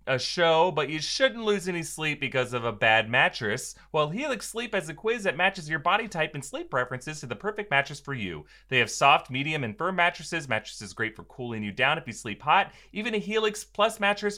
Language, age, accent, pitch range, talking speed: English, 30-49, American, 140-190 Hz, 230 wpm